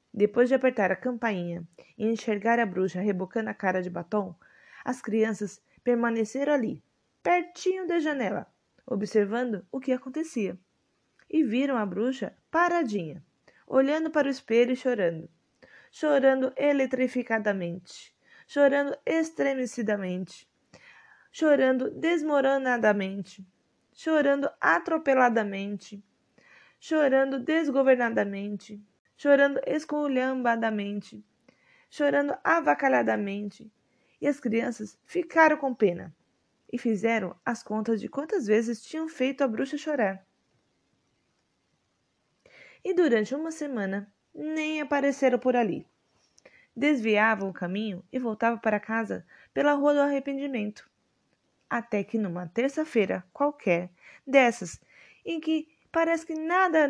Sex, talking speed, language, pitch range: female, 105 wpm, Portuguese, 205-285 Hz